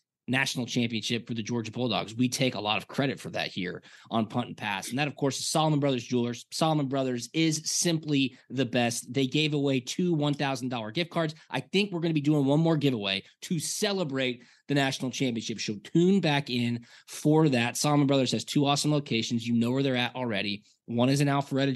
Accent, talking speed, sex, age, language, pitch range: American, 210 wpm, male, 20-39, English, 120-150 Hz